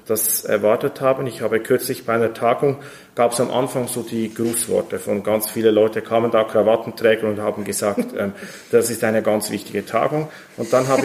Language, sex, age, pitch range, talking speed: German, male, 40-59, 115-135 Hz, 195 wpm